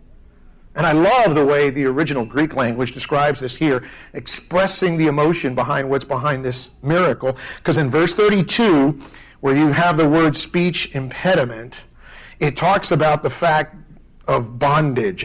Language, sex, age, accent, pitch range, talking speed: English, male, 50-69, American, 130-175 Hz, 150 wpm